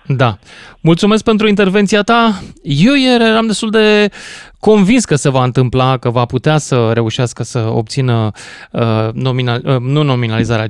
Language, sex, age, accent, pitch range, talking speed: Romanian, male, 20-39, native, 120-180 Hz, 145 wpm